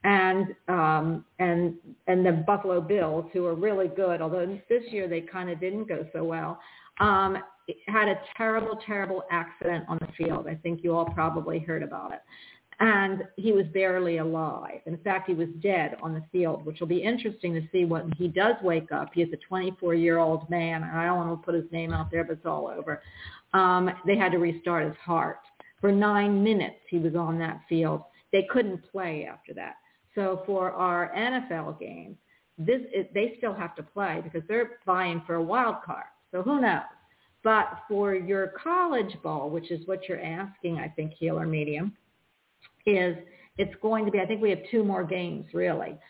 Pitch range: 170-205 Hz